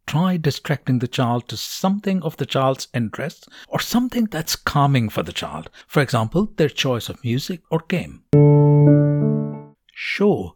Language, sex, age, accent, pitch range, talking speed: English, male, 60-79, Indian, 115-160 Hz, 150 wpm